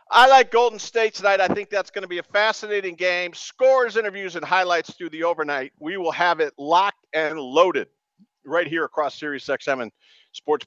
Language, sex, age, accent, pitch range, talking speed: English, male, 50-69, American, 165-220 Hz, 195 wpm